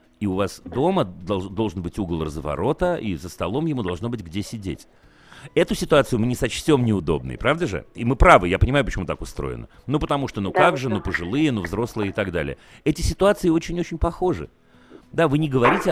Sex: male